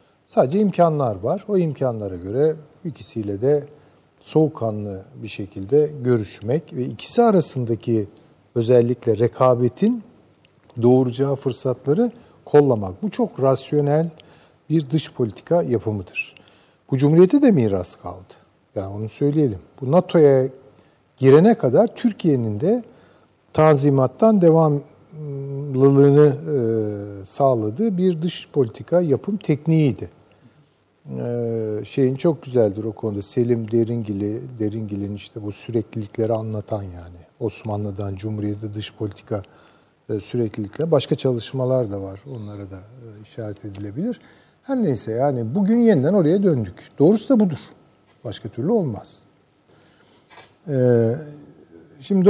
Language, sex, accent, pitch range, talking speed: Turkish, male, native, 110-155 Hz, 100 wpm